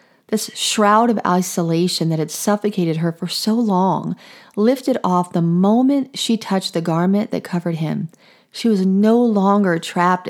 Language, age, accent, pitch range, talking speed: English, 40-59, American, 175-220 Hz, 155 wpm